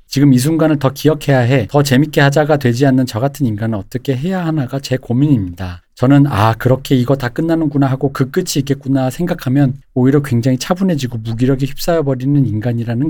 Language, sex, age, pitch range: Korean, male, 40-59, 115-145 Hz